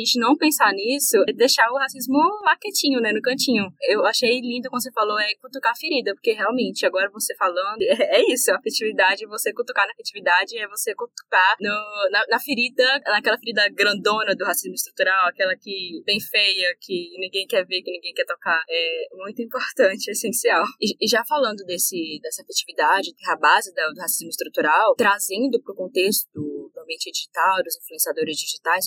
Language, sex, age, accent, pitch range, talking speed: Portuguese, female, 10-29, Brazilian, 200-275 Hz, 185 wpm